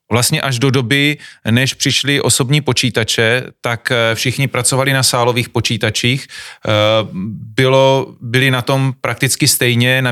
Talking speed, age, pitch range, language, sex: 125 wpm, 30-49, 115-130 Hz, Czech, male